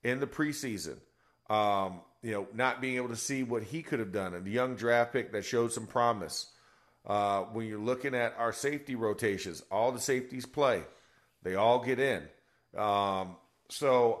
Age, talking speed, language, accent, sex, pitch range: 40-59, 180 wpm, English, American, male, 115-135 Hz